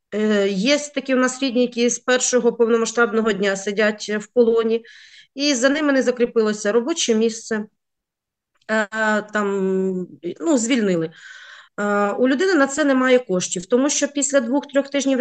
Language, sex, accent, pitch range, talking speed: Ukrainian, female, native, 195-260 Hz, 135 wpm